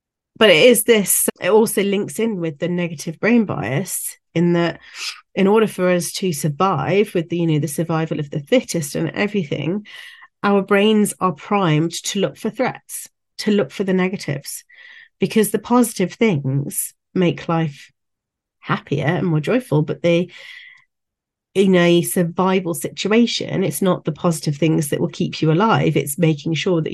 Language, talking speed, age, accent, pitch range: English, 165 wpm, 40-59, British, 160-205 Hz